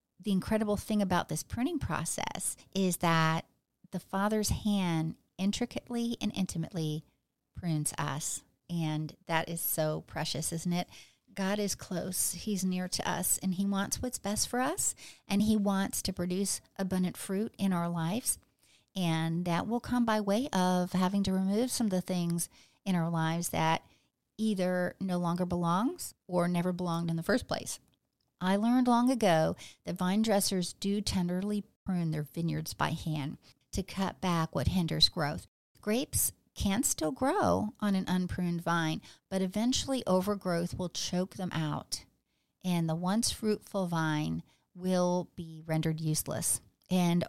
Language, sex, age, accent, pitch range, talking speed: English, female, 40-59, American, 160-200 Hz, 155 wpm